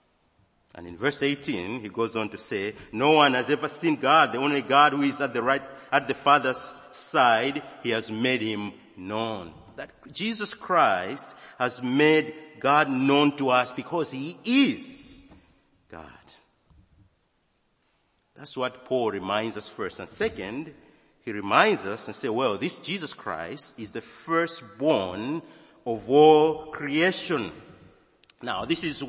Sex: male